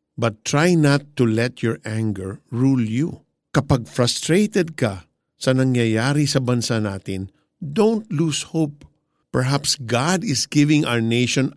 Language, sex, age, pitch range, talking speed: Filipino, male, 50-69, 110-145 Hz, 135 wpm